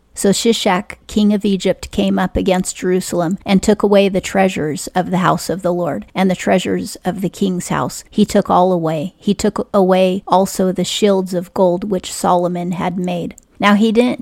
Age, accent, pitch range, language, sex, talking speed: 30-49, American, 180-195 Hz, English, female, 195 wpm